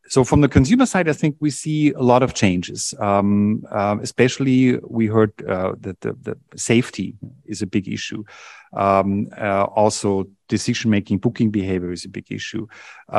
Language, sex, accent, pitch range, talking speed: German, male, German, 100-125 Hz, 175 wpm